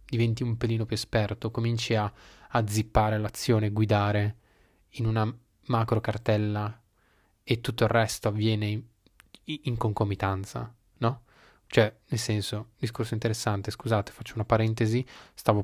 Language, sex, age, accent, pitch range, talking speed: Italian, male, 20-39, native, 105-120 Hz, 130 wpm